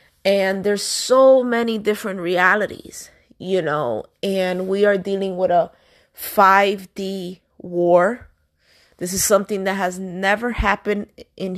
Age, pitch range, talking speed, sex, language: 30-49, 180-225 Hz, 125 wpm, female, English